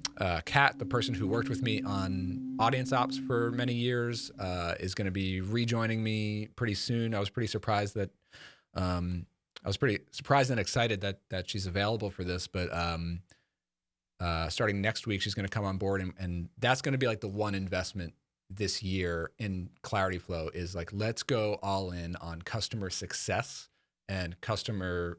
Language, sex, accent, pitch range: English, male, American, 90-115 Hz